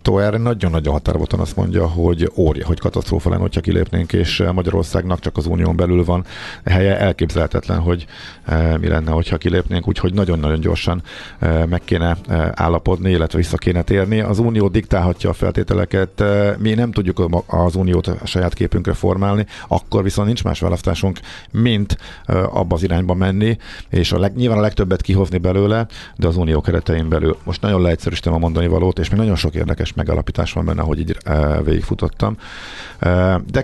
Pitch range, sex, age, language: 85-105 Hz, male, 50-69, Hungarian